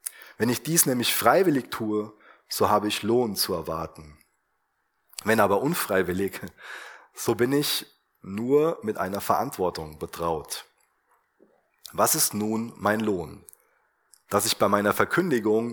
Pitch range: 95-120 Hz